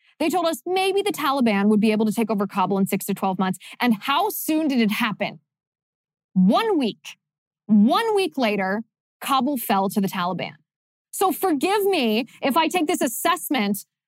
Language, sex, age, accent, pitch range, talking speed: English, female, 20-39, American, 200-290 Hz, 180 wpm